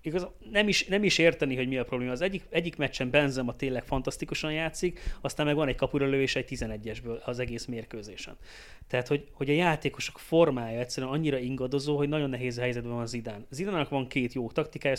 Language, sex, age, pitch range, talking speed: Hungarian, male, 30-49, 120-150 Hz, 190 wpm